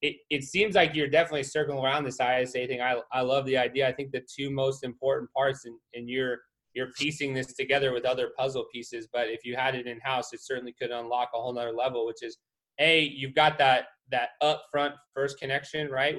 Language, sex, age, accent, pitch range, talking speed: English, male, 20-39, American, 125-150 Hz, 215 wpm